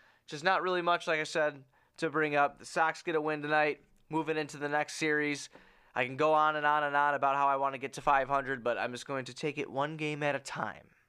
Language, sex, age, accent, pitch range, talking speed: English, male, 20-39, American, 130-155 Hz, 265 wpm